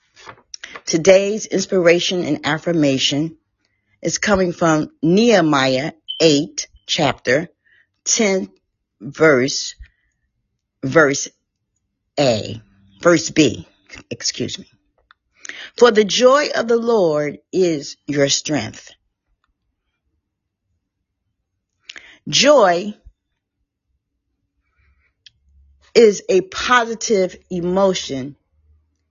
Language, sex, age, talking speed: English, female, 40-59, 65 wpm